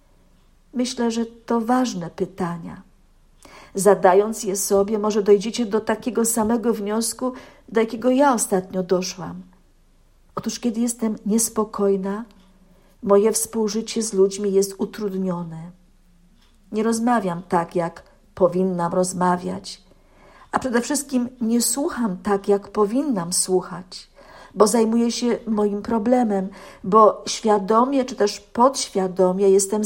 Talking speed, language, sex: 110 wpm, Polish, female